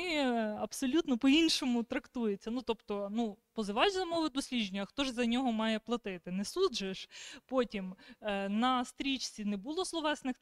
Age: 20-39